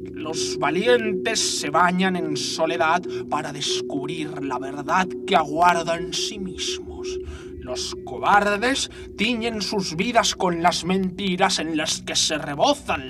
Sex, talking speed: male, 130 wpm